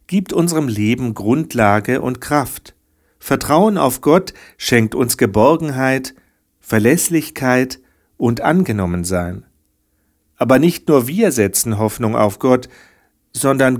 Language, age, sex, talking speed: German, 50-69, male, 105 wpm